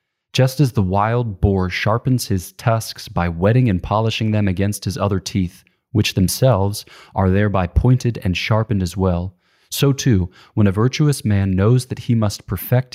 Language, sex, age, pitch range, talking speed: English, male, 20-39, 95-120 Hz, 170 wpm